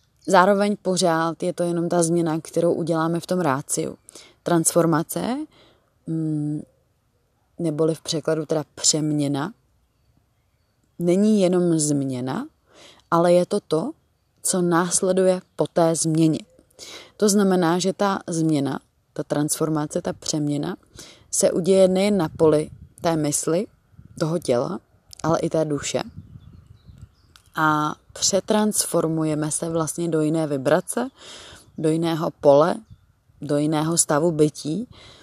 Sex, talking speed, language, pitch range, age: female, 110 wpm, Czech, 145-165 Hz, 20-39